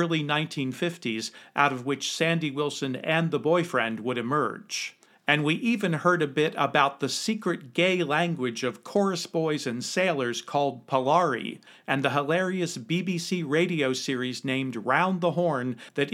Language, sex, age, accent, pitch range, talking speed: English, male, 50-69, American, 130-170 Hz, 150 wpm